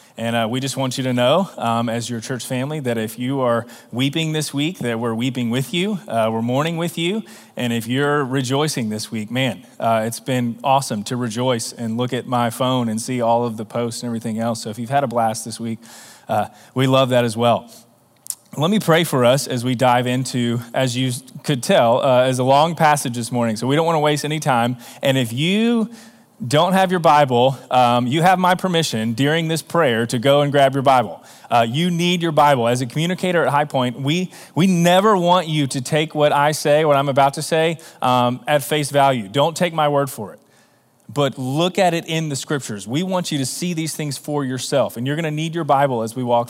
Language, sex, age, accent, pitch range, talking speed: English, male, 30-49, American, 120-150 Hz, 230 wpm